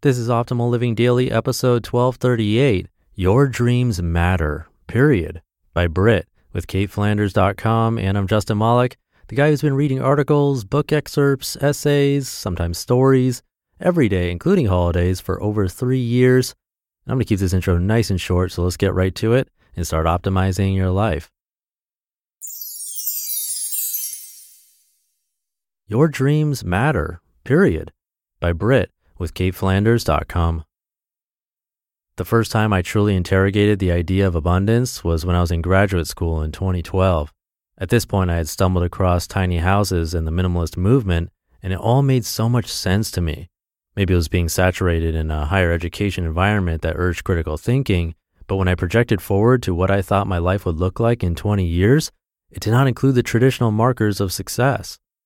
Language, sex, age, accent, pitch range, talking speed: English, male, 30-49, American, 90-120 Hz, 160 wpm